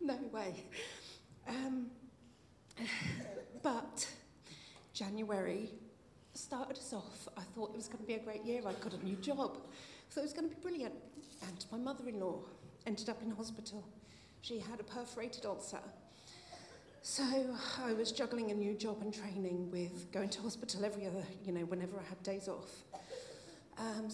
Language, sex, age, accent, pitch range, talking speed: English, female, 40-59, British, 195-240 Hz, 160 wpm